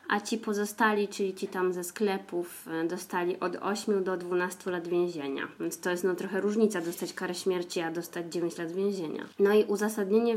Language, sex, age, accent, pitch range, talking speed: Polish, female, 20-39, native, 180-220 Hz, 180 wpm